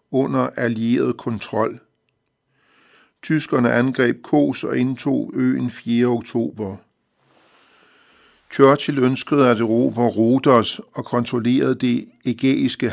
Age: 60-79